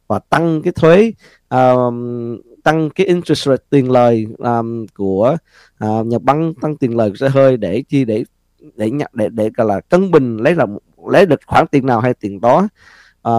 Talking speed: 195 wpm